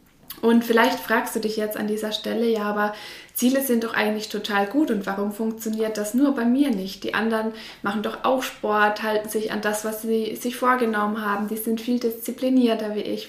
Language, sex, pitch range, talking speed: German, female, 205-235 Hz, 210 wpm